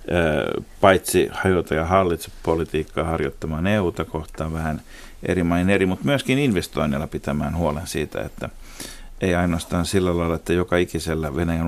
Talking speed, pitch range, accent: 135 wpm, 80-90 Hz, native